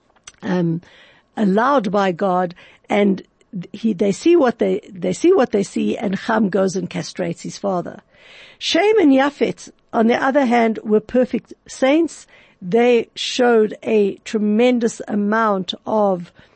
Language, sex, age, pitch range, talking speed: English, female, 60-79, 195-270 Hz, 140 wpm